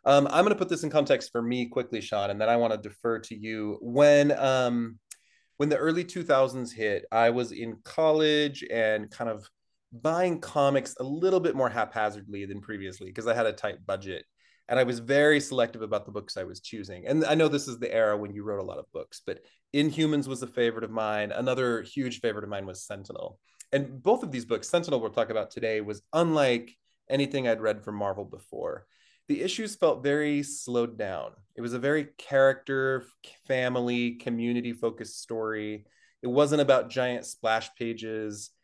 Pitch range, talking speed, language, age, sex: 110-145 Hz, 195 wpm, English, 30-49, male